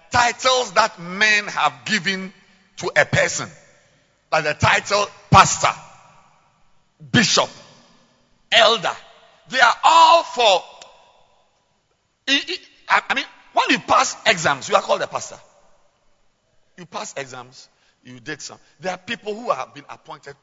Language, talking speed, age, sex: English, 125 wpm, 50-69, male